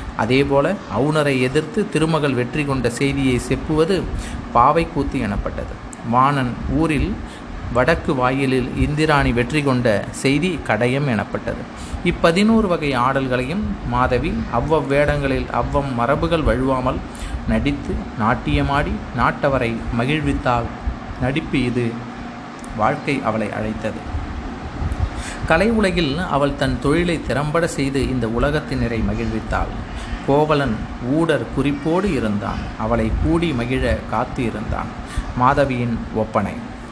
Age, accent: 30-49, native